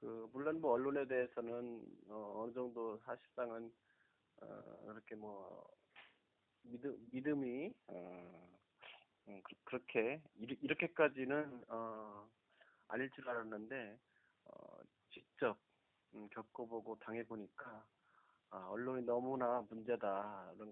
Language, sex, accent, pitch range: Korean, male, native, 105-125 Hz